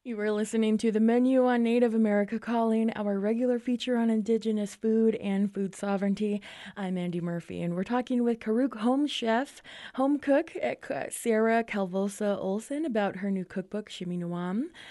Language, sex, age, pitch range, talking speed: English, female, 20-39, 190-245 Hz, 160 wpm